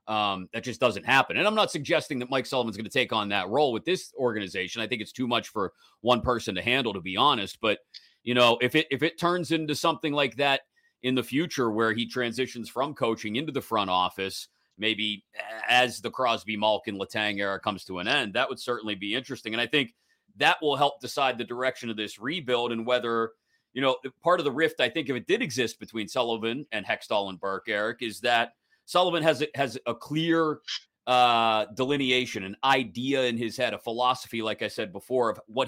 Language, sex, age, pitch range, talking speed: English, male, 30-49, 110-140 Hz, 220 wpm